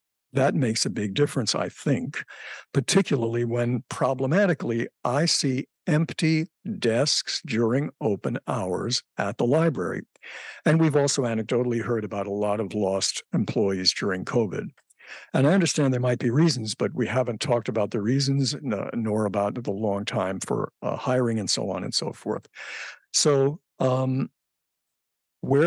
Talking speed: 150 wpm